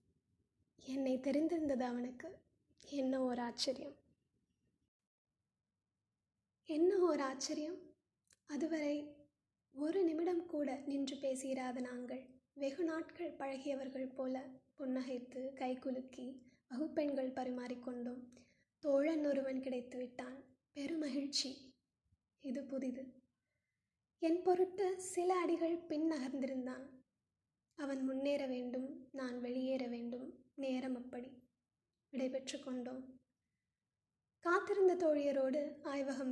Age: 20-39